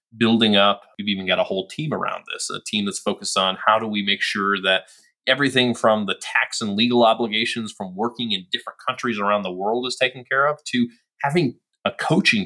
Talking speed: 210 wpm